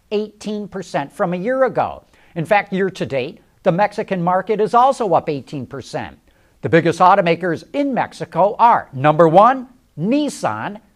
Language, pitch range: English, 150-215 Hz